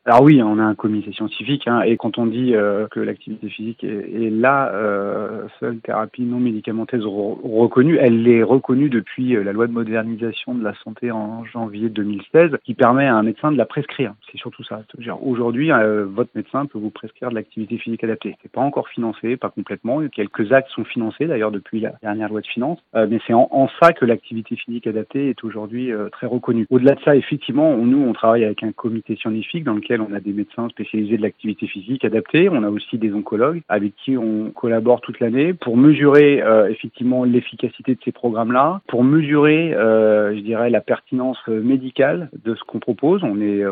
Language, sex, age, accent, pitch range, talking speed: French, male, 30-49, French, 105-125 Hz, 205 wpm